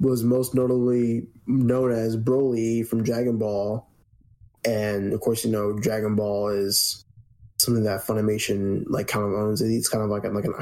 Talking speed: 175 wpm